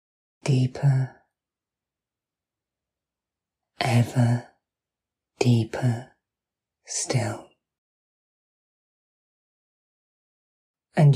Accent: British